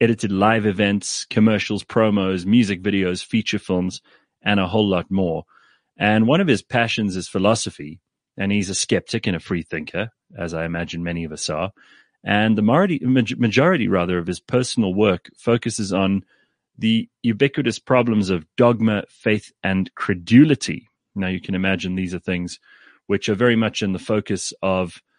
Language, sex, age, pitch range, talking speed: English, male, 30-49, 95-110 Hz, 165 wpm